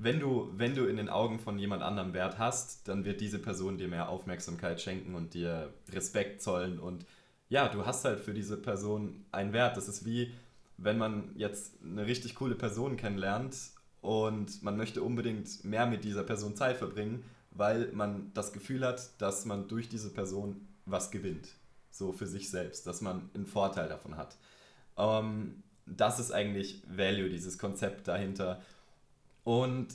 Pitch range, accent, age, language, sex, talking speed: 100-120 Hz, German, 20-39, German, male, 170 wpm